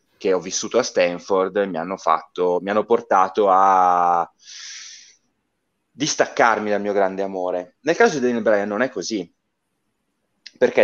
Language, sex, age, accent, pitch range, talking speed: Italian, male, 30-49, native, 95-120 Hz, 145 wpm